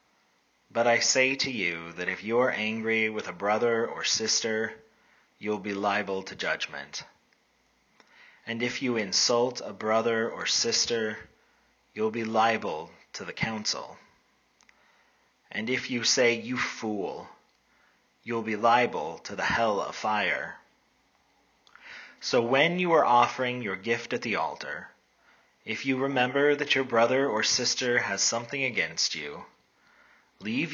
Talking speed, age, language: 135 wpm, 30-49, English